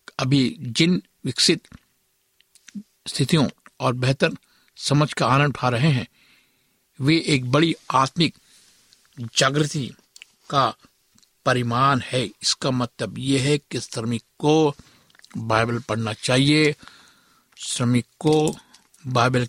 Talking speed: 90 wpm